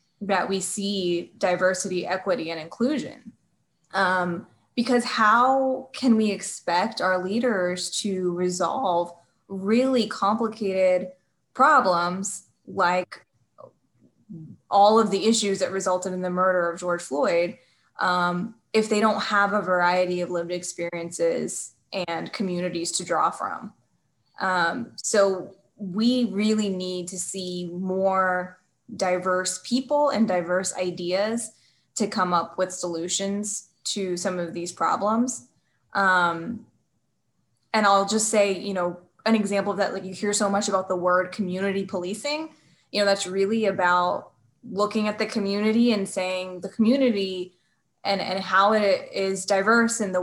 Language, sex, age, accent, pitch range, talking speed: English, female, 10-29, American, 180-215 Hz, 135 wpm